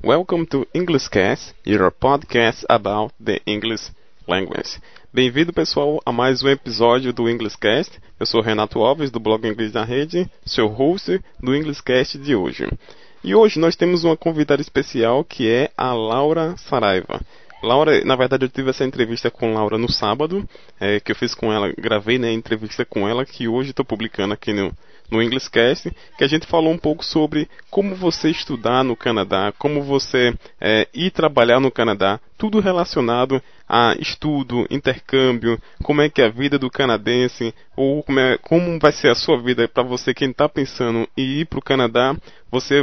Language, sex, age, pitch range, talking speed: Portuguese, male, 20-39, 115-145 Hz, 180 wpm